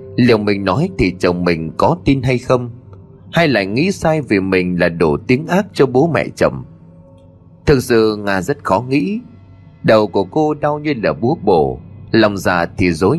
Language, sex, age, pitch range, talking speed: Vietnamese, male, 20-39, 95-140 Hz, 190 wpm